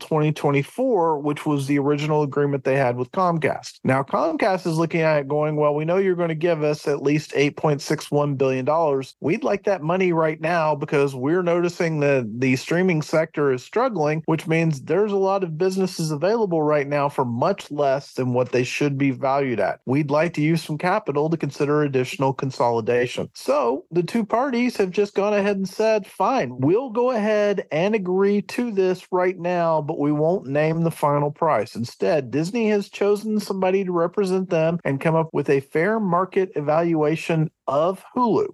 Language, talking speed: English, 185 wpm